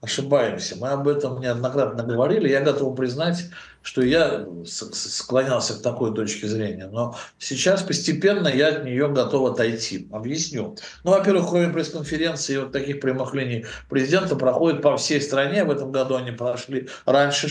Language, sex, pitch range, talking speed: Russian, male, 125-160 Hz, 150 wpm